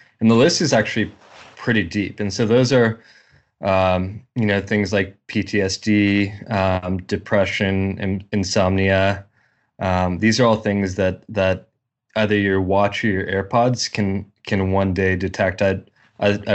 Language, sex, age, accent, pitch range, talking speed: English, male, 20-39, American, 95-110 Hz, 145 wpm